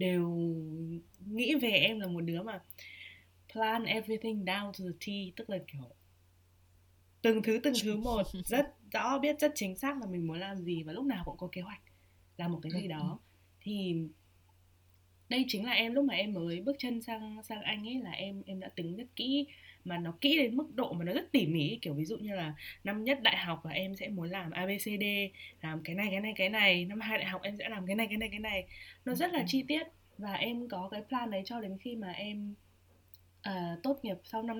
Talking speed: 230 wpm